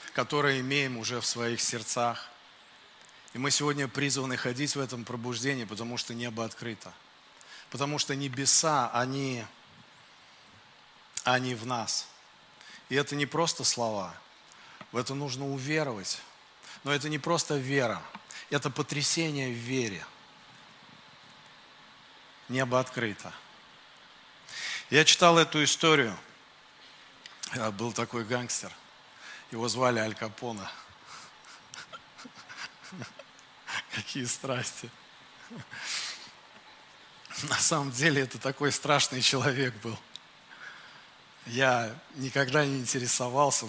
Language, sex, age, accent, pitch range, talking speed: Russian, male, 50-69, native, 120-140 Hz, 100 wpm